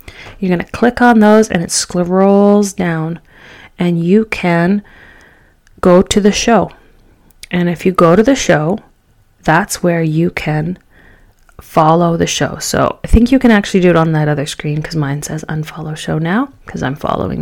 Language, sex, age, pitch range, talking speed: English, female, 30-49, 170-220 Hz, 180 wpm